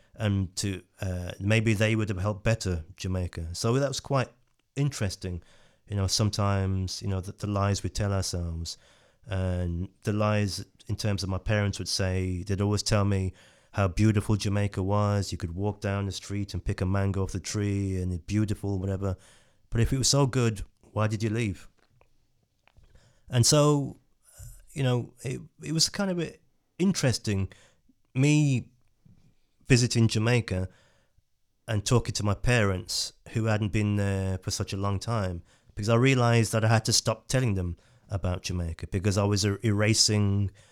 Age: 30-49